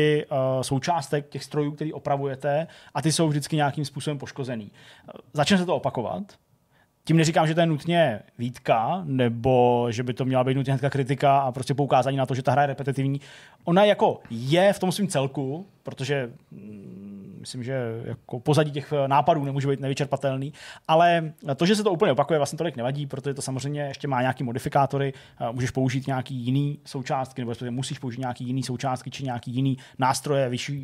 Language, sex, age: Czech, male, 30-49